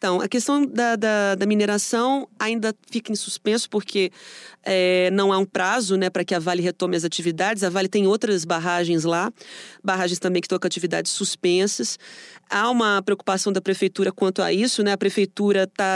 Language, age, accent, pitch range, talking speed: Portuguese, 30-49, Brazilian, 185-230 Hz, 190 wpm